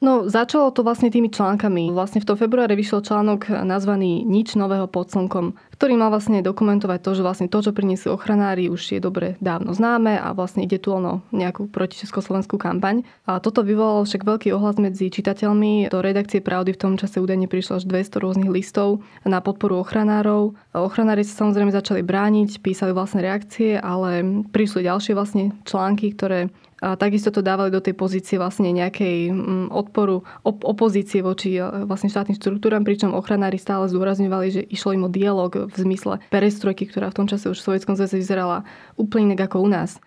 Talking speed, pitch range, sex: 180 wpm, 190-210 Hz, female